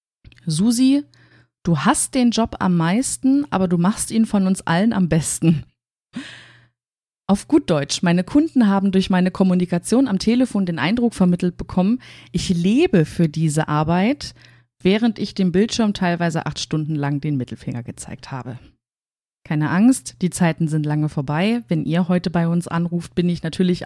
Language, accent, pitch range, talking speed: German, German, 160-210 Hz, 160 wpm